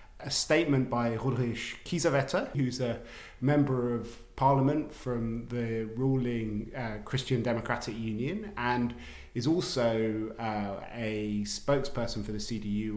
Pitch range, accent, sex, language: 115-135 Hz, British, male, English